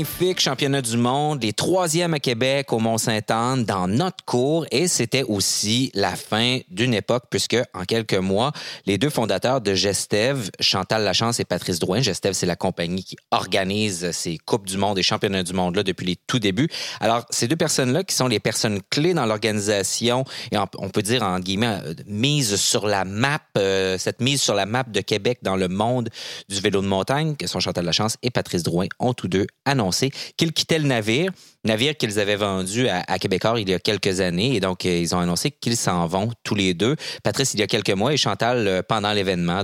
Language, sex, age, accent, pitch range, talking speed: French, male, 30-49, Canadian, 100-130 Hz, 205 wpm